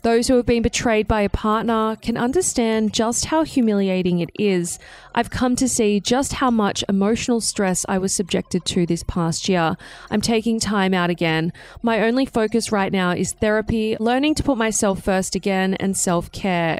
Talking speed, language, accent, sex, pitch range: 185 wpm, English, Australian, female, 195-245 Hz